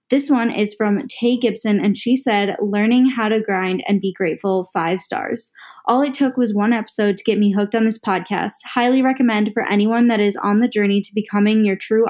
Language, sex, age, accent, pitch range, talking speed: English, female, 20-39, American, 195-230 Hz, 220 wpm